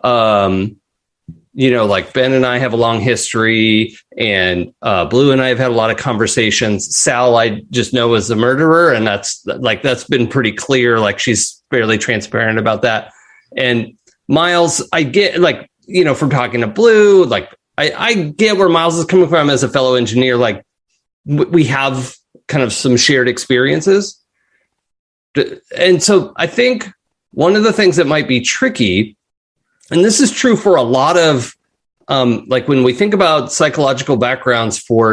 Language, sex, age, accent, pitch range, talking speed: English, male, 30-49, American, 115-170 Hz, 180 wpm